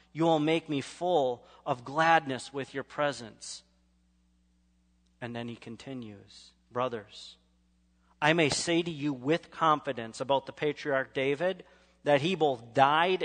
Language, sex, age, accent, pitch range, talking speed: English, male, 40-59, American, 115-165 Hz, 135 wpm